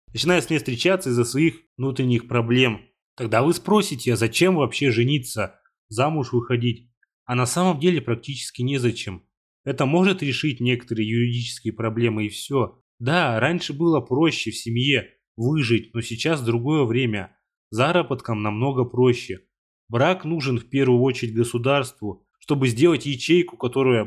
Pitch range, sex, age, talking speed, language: 120-145 Hz, male, 20-39, 135 wpm, Russian